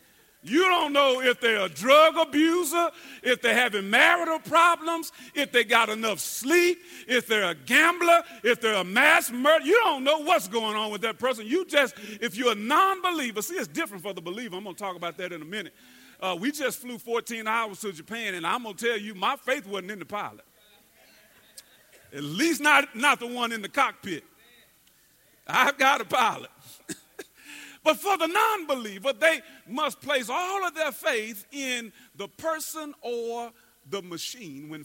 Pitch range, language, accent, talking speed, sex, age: 215-310 Hz, English, American, 190 wpm, male, 50-69